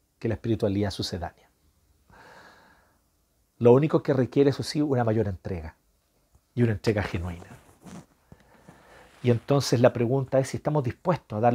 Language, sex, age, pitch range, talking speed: Spanish, male, 50-69, 110-150 Hz, 135 wpm